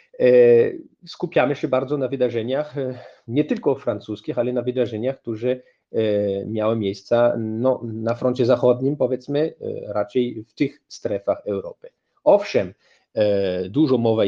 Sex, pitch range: male, 105-135 Hz